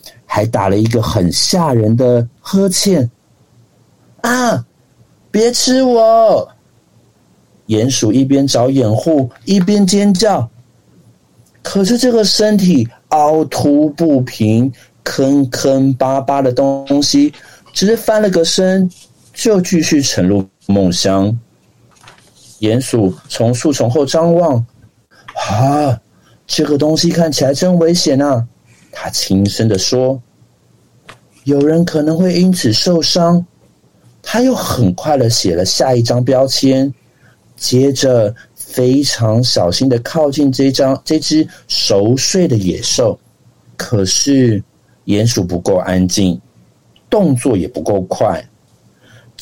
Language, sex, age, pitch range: Chinese, male, 50-69, 115-155 Hz